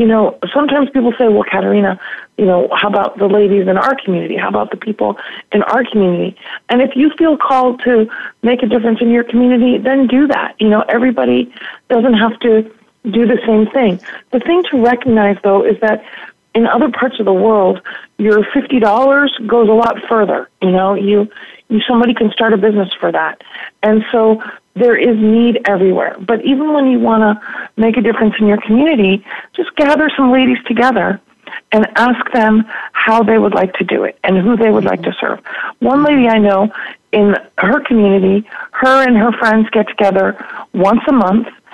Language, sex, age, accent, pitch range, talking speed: English, female, 40-59, American, 205-245 Hz, 195 wpm